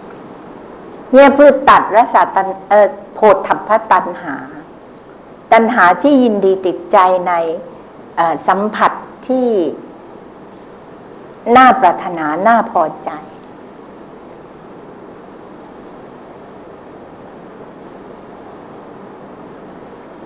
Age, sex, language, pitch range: 60-79, female, Thai, 175-230 Hz